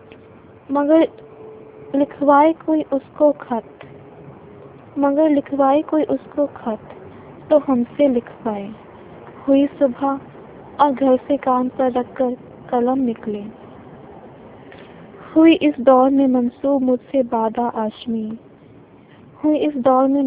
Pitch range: 240-280 Hz